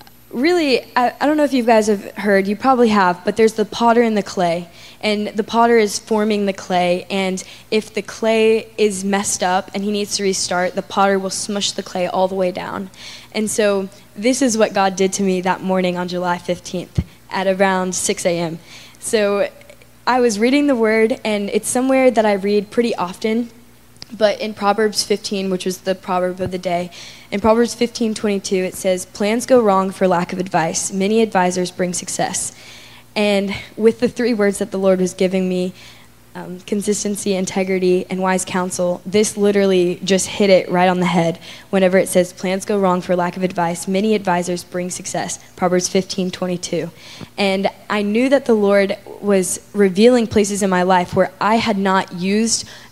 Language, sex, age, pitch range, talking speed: English, female, 10-29, 185-215 Hz, 195 wpm